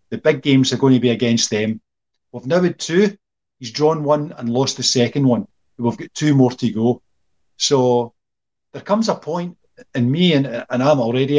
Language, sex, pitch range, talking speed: English, male, 125-155 Hz, 200 wpm